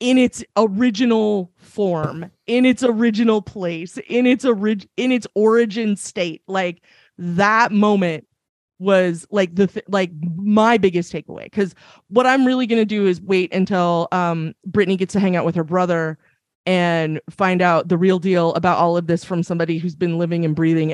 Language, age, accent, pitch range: English, 30-49, American, 165-195 Hz